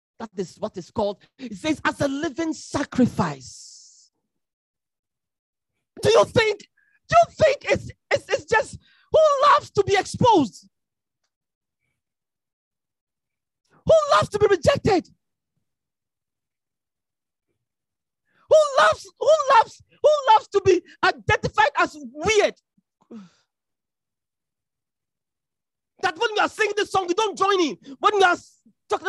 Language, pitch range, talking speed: English, 260-390 Hz, 115 wpm